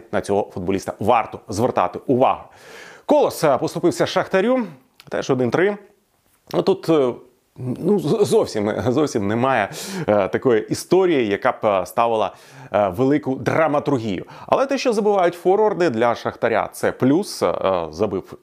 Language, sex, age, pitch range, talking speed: Ukrainian, male, 30-49, 115-175 Hz, 115 wpm